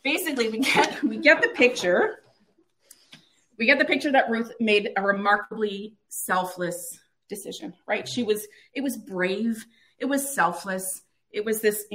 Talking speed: 150 wpm